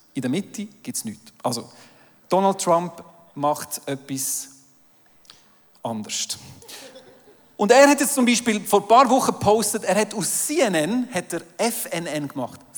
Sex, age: male, 40-59